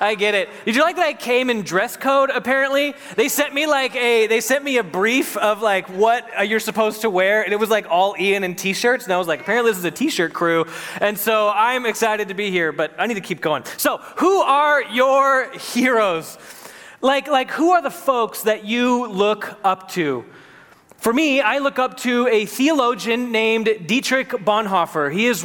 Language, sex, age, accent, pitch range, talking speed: English, male, 20-39, American, 185-245 Hz, 210 wpm